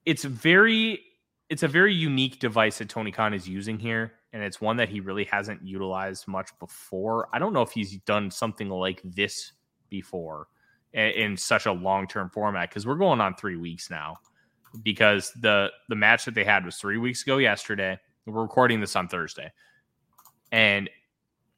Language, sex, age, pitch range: English, male, 20-39, 95-125 Hz